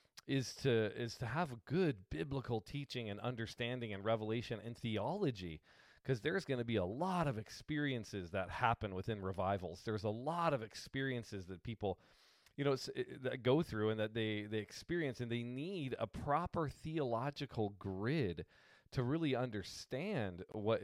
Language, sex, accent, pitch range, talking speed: English, male, American, 105-135 Hz, 160 wpm